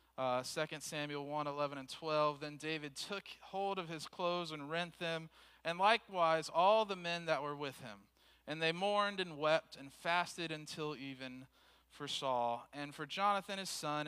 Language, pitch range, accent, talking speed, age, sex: English, 140-175 Hz, American, 180 wpm, 40-59, male